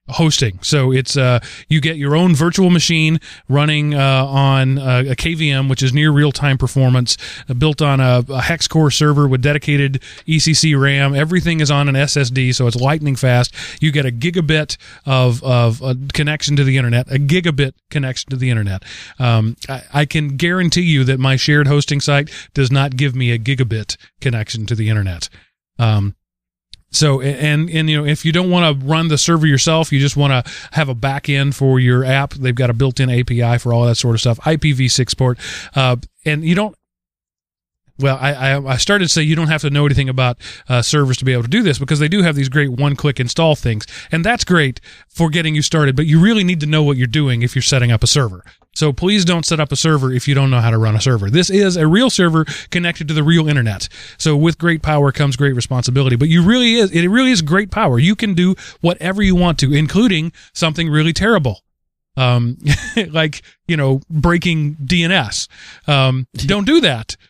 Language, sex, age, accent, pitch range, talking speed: English, male, 30-49, American, 125-160 Hz, 210 wpm